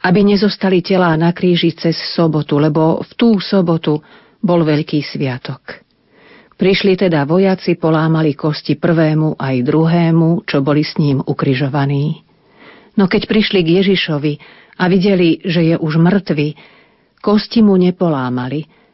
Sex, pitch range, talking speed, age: female, 155-185 Hz, 130 wpm, 40-59